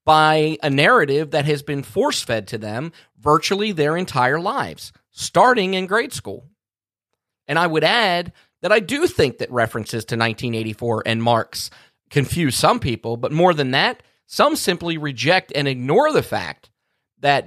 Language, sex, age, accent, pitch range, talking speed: English, male, 30-49, American, 120-165 Hz, 160 wpm